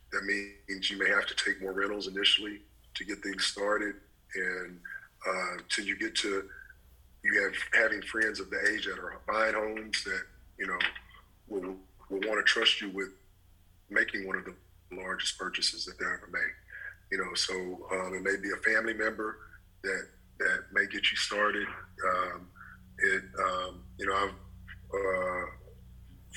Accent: American